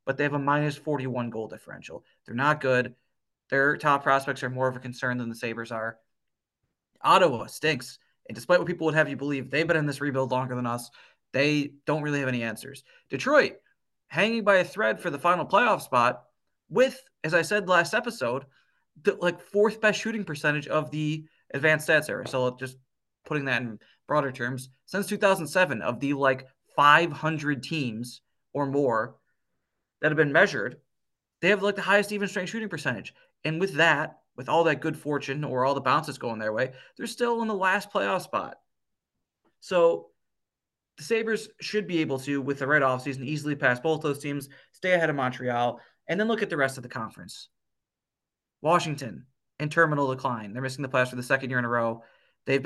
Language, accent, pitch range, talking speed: English, American, 130-170 Hz, 195 wpm